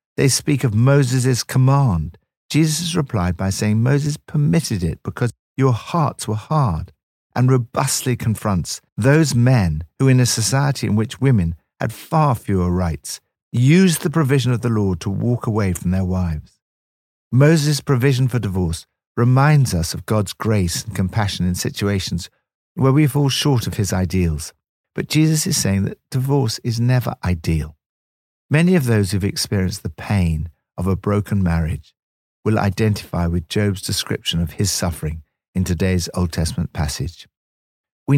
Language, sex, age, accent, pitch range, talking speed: English, male, 60-79, British, 90-135 Hz, 155 wpm